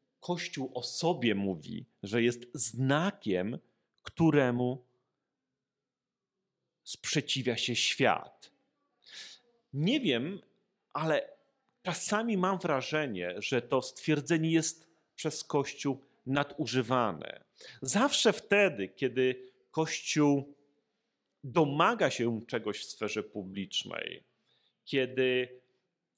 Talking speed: 80 wpm